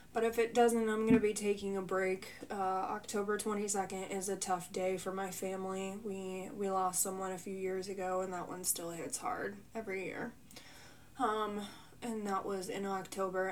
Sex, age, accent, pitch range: female, 20-39, American, 190-215 Hz